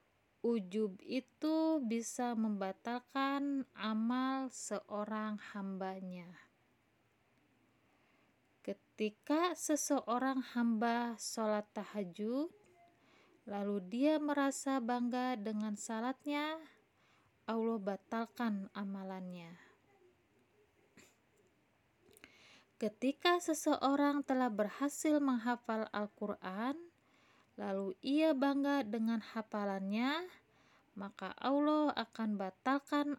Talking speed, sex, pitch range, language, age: 65 wpm, female, 210-280 Hz, Indonesian, 20-39